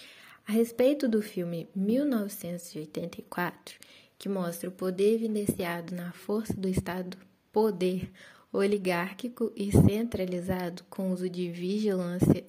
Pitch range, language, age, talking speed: 185-215 Hz, Portuguese, 20-39, 105 wpm